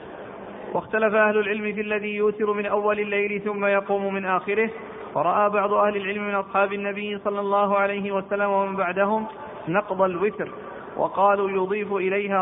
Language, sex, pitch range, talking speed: Arabic, male, 190-210 Hz, 150 wpm